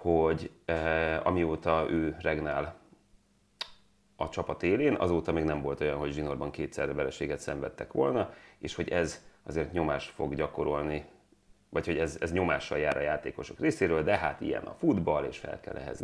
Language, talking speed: Hungarian, 165 wpm